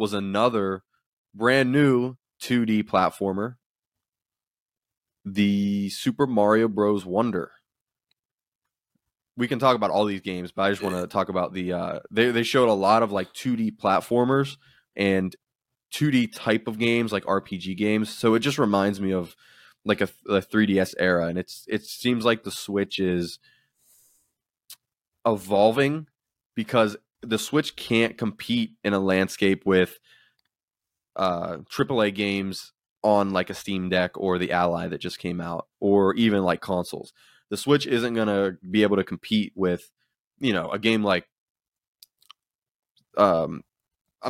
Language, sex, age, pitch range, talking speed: English, male, 20-39, 95-115 Hz, 145 wpm